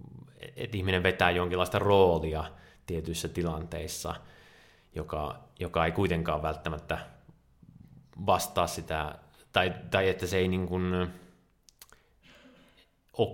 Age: 30-49